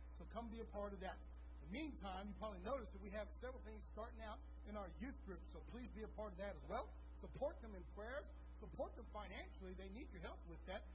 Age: 60-79